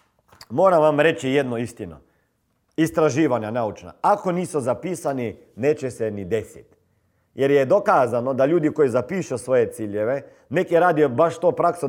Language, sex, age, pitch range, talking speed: Croatian, male, 40-59, 125-180 Hz, 145 wpm